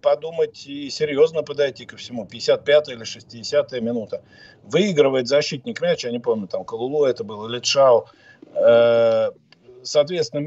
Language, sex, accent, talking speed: Russian, male, native, 125 wpm